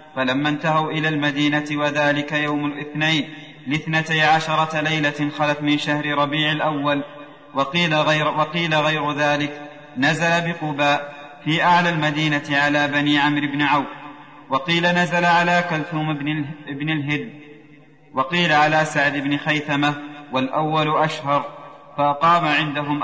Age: 30-49